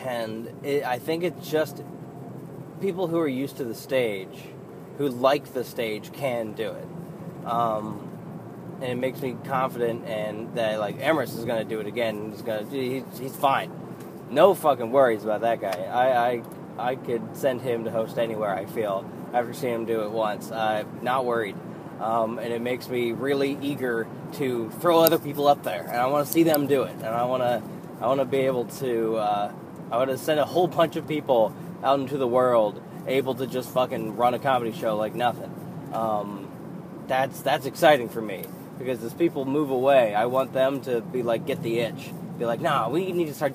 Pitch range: 115-150 Hz